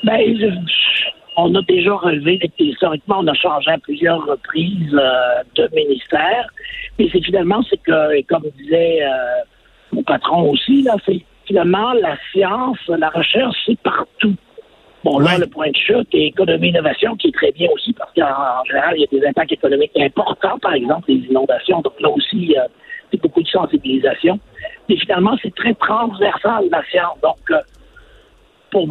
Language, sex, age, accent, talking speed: French, male, 60-79, French, 170 wpm